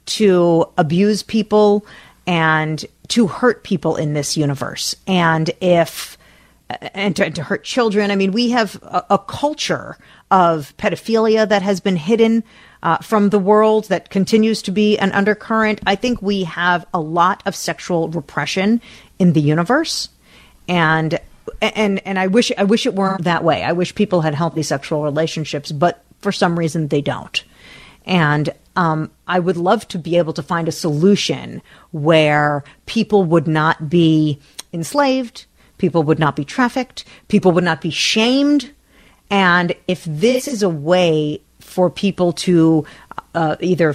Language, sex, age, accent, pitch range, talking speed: English, female, 40-59, American, 165-210 Hz, 160 wpm